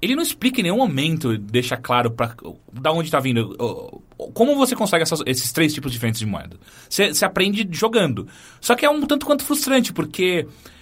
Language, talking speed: English, 190 wpm